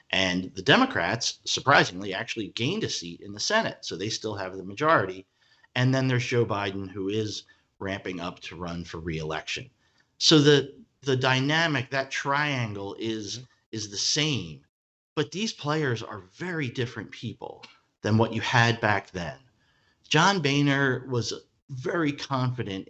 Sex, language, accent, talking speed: male, English, American, 150 wpm